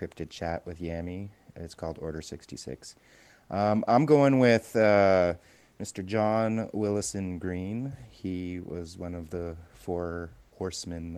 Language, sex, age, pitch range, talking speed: English, male, 30-49, 85-95 Hz, 130 wpm